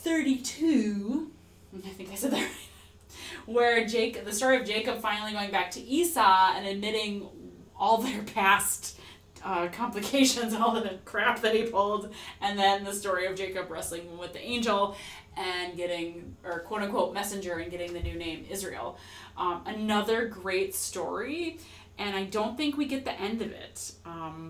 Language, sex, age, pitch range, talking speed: English, female, 20-39, 175-220 Hz, 170 wpm